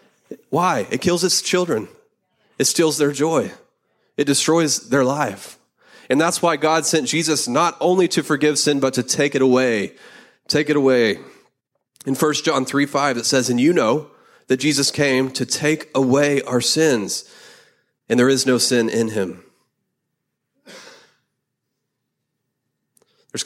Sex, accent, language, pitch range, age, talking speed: male, American, English, 125-155 Hz, 30-49, 150 wpm